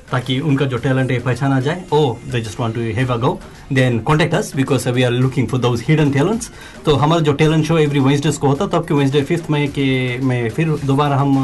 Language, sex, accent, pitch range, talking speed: Hindi, male, native, 120-145 Hz, 230 wpm